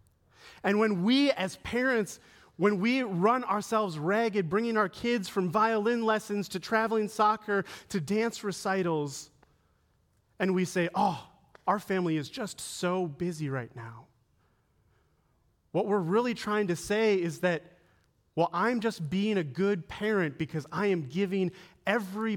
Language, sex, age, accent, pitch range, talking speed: English, male, 30-49, American, 165-210 Hz, 145 wpm